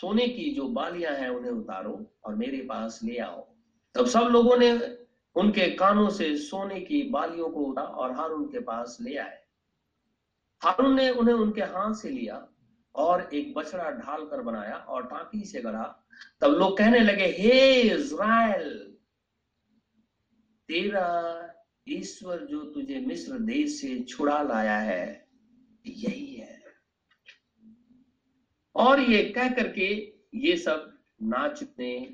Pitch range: 200-270 Hz